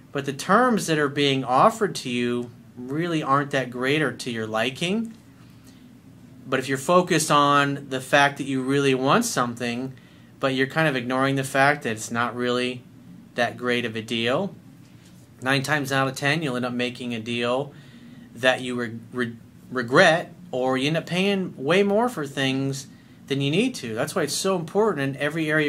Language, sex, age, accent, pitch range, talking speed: English, male, 40-59, American, 125-160 Hz, 185 wpm